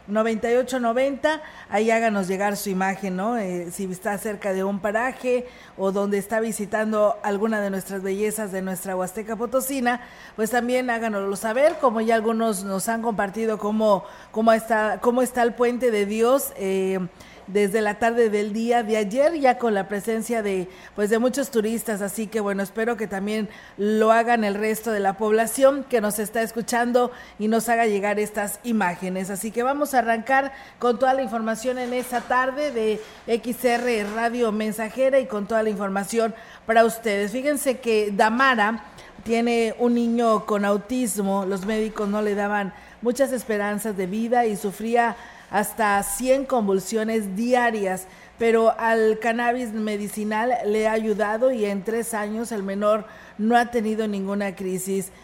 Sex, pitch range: female, 205-240 Hz